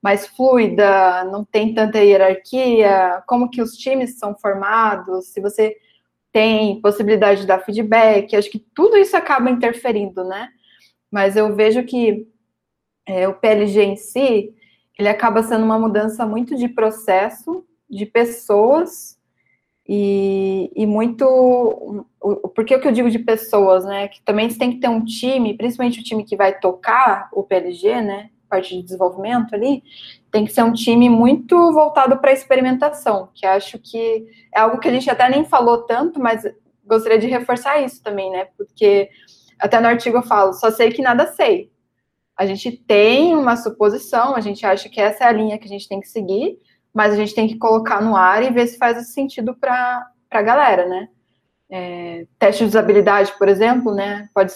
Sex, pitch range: female, 200-245 Hz